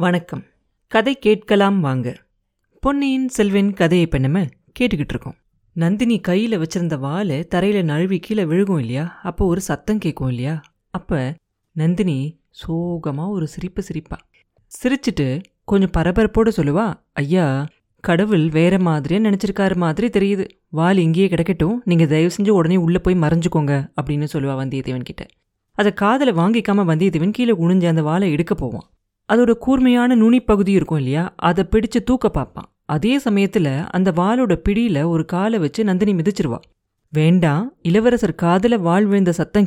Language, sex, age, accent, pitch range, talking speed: Tamil, female, 30-49, native, 160-210 Hz, 135 wpm